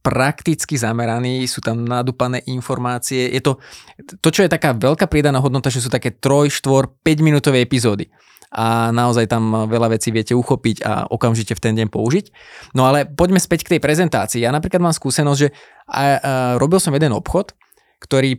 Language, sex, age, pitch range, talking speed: Slovak, male, 20-39, 115-140 Hz, 175 wpm